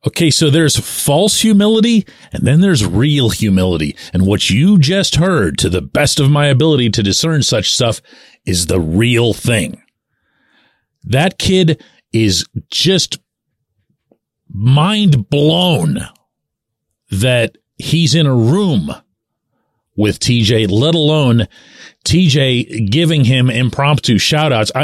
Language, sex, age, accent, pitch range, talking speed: English, male, 40-59, American, 125-200 Hz, 115 wpm